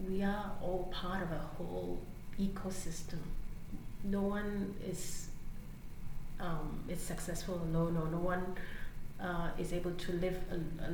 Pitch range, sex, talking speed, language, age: 165-190 Hz, female, 130 wpm, English, 30-49